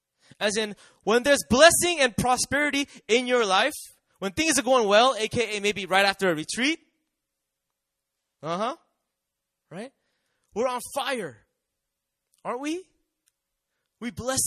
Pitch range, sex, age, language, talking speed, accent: 160-250 Hz, male, 20-39, English, 125 wpm, American